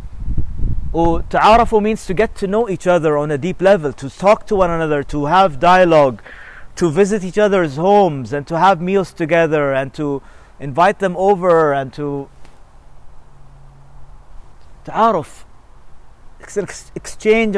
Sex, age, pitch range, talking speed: male, 40-59, 135-200 Hz, 140 wpm